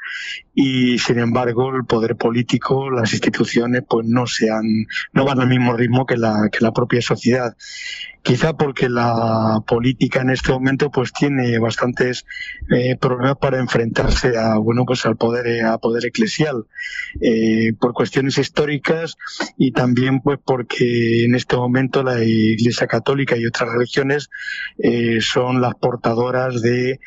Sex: male